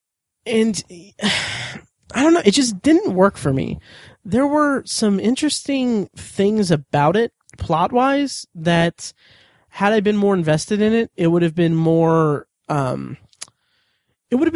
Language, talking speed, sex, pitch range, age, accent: English, 145 wpm, male, 155-205 Hz, 20-39, American